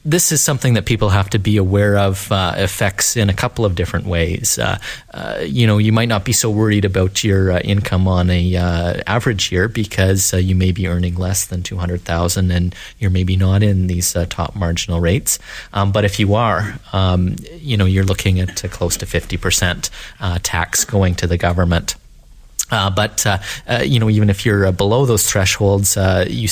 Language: English